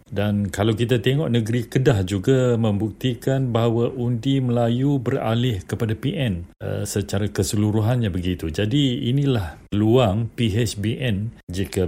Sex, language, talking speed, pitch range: male, Malay, 115 wpm, 95-120 Hz